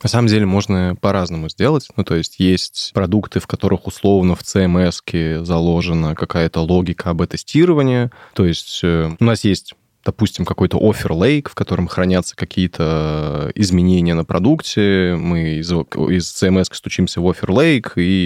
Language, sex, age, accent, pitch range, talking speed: Russian, male, 20-39, native, 85-105 Hz, 140 wpm